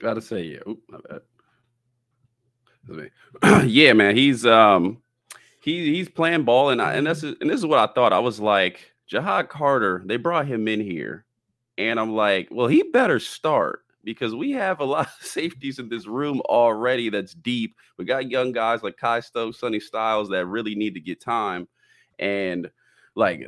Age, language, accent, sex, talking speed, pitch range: 30-49, English, American, male, 185 wpm, 105-130 Hz